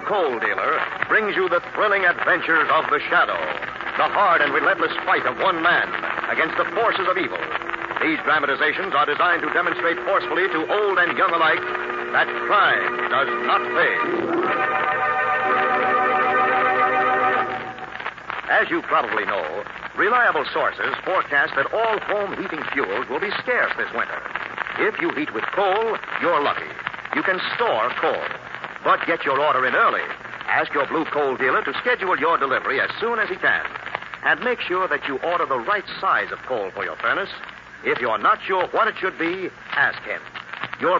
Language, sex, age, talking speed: English, male, 60-79, 165 wpm